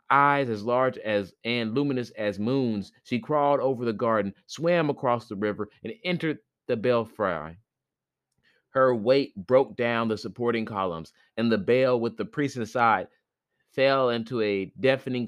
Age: 30-49